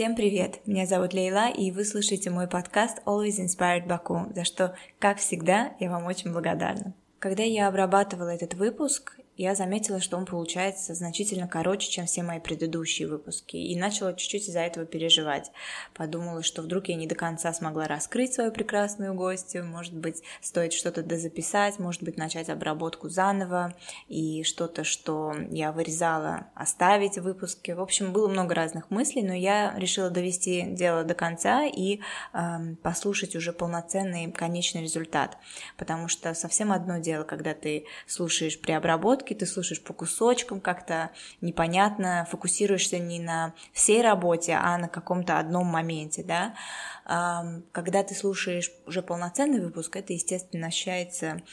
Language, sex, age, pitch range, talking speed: Russian, female, 20-39, 170-195 Hz, 150 wpm